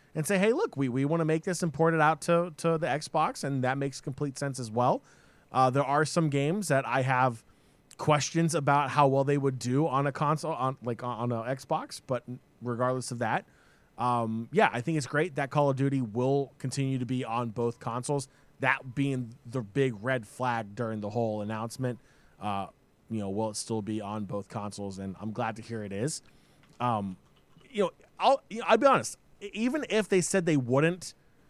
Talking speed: 210 wpm